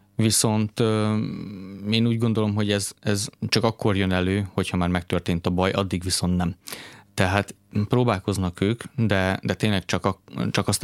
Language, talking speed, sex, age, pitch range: Hungarian, 155 wpm, male, 20-39, 95-110 Hz